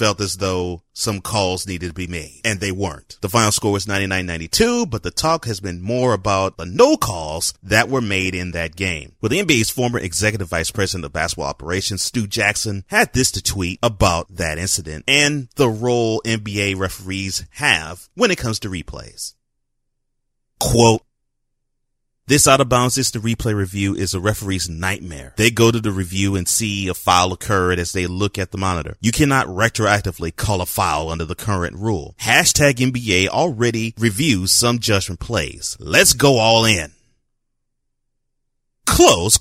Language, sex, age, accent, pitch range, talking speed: English, male, 30-49, American, 90-115 Hz, 170 wpm